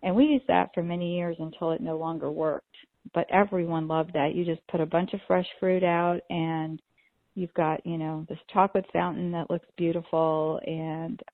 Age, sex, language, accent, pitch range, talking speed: 40-59, female, English, American, 165-190 Hz, 195 wpm